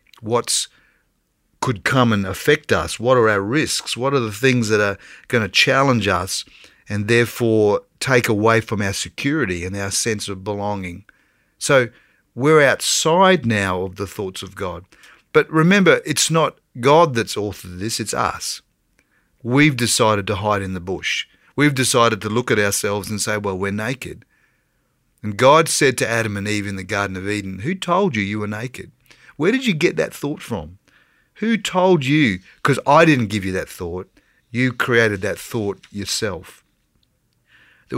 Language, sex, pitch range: English, male, 100-130 Hz